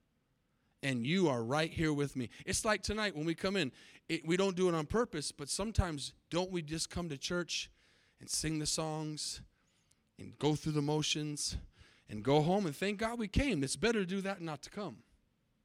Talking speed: 205 wpm